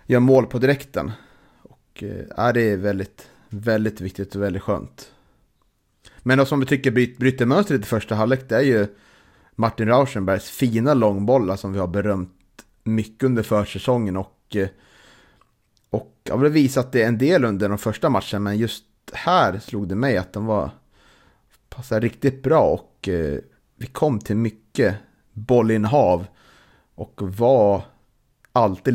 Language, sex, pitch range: Swedish, male, 100-125 Hz